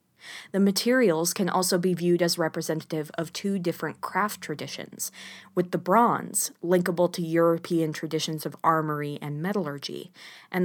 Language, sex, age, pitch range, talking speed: English, female, 20-39, 160-195 Hz, 140 wpm